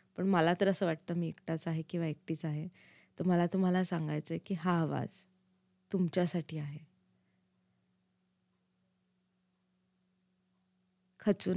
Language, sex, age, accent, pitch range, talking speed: Marathi, female, 20-39, native, 175-190 Hz, 95 wpm